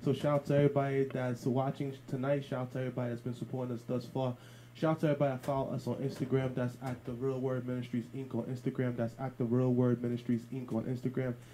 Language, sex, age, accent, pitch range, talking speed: English, male, 20-39, American, 120-130 Hz, 220 wpm